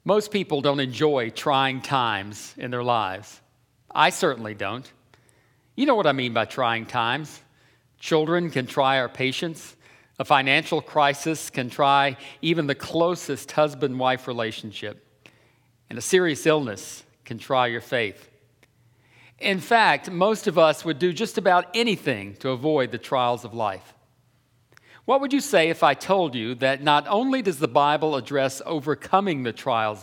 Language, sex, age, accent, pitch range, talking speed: English, male, 50-69, American, 120-165 Hz, 155 wpm